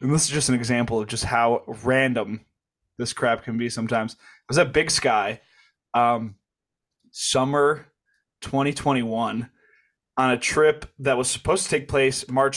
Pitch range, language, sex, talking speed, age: 120-140 Hz, English, male, 160 wpm, 20-39